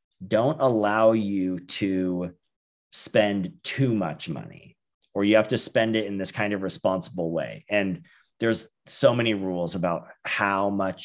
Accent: American